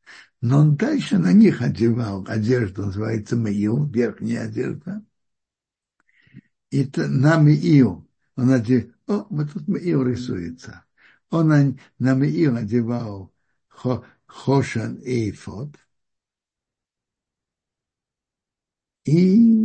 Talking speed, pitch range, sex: 90 wpm, 120-160 Hz, male